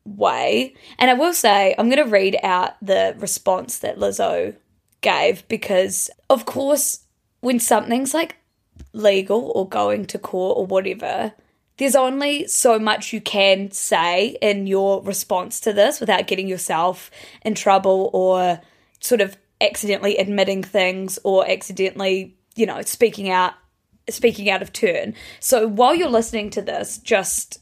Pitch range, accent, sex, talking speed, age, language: 195-235 Hz, Australian, female, 145 wpm, 20-39, English